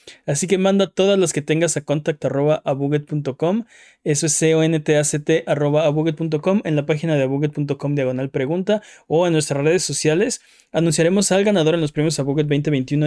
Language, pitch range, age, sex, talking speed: Spanish, 145-185 Hz, 20-39, male, 145 wpm